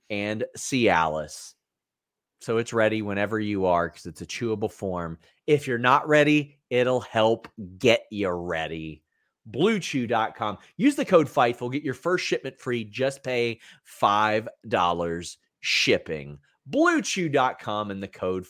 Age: 30-49